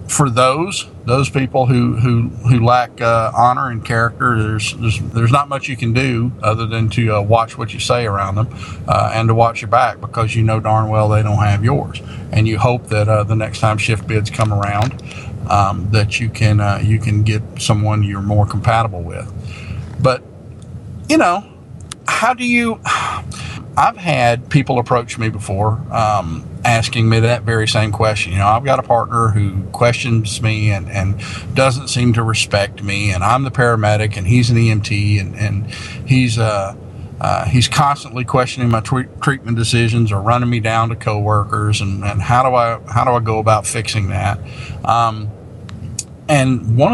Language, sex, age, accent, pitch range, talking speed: English, male, 40-59, American, 105-120 Hz, 185 wpm